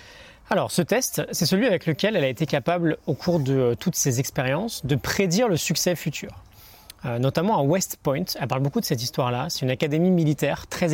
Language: French